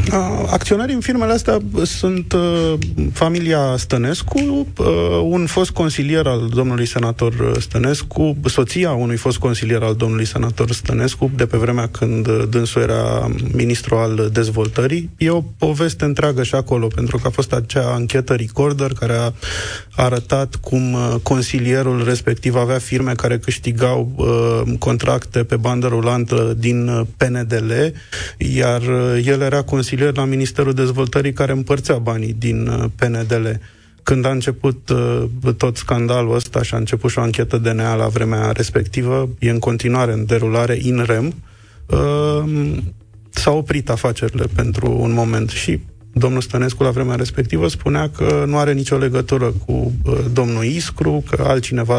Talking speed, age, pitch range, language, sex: 145 wpm, 20-39, 115-135 Hz, Romanian, male